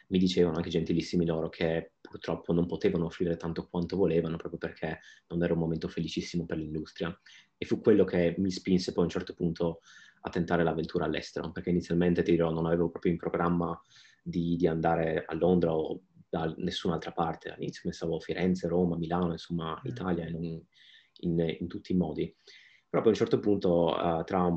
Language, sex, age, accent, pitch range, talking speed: Italian, male, 30-49, native, 80-90 Hz, 180 wpm